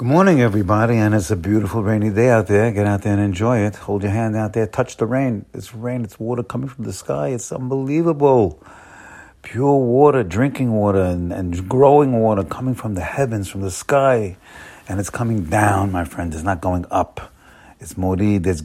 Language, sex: English, male